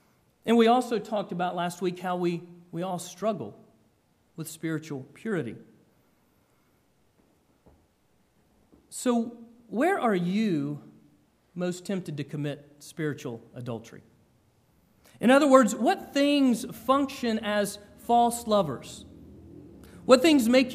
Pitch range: 165-230 Hz